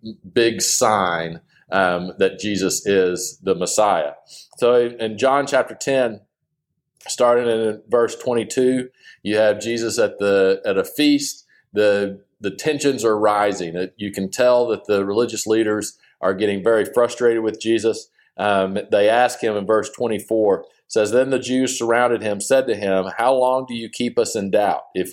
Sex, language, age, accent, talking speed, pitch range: male, English, 40-59, American, 165 wpm, 100-125 Hz